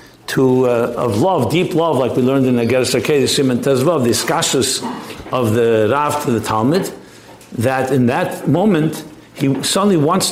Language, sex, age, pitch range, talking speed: English, male, 60-79, 135-185 Hz, 185 wpm